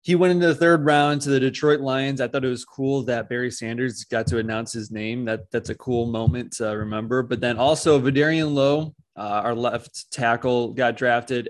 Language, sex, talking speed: English, male, 210 wpm